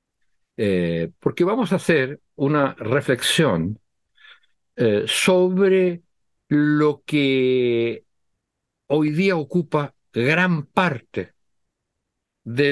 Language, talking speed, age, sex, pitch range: Spanish, 80 wpm, 60-79, male, 110-180 Hz